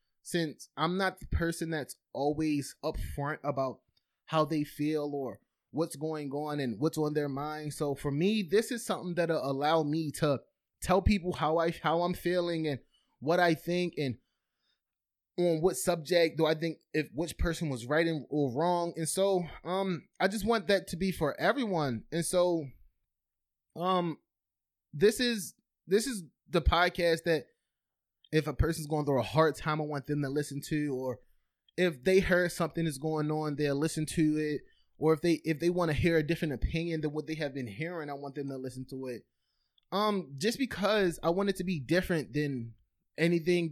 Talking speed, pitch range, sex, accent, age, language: 190 wpm, 145-175 Hz, male, American, 20-39, English